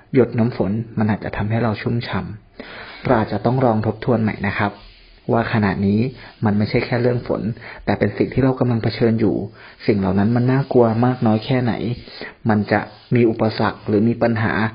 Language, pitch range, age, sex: Thai, 100-115 Hz, 30-49, male